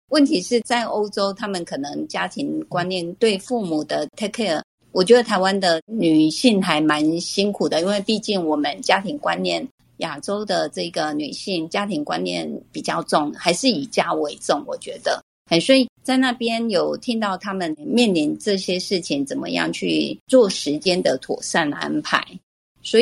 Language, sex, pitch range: Chinese, female, 170-235 Hz